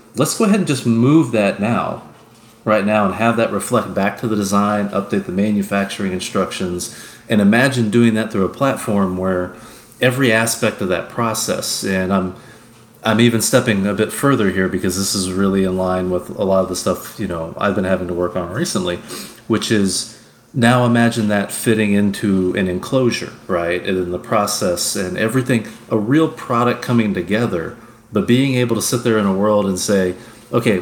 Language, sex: English, male